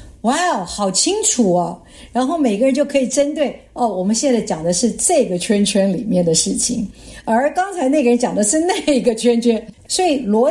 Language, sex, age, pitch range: Chinese, female, 50-69, 175-245 Hz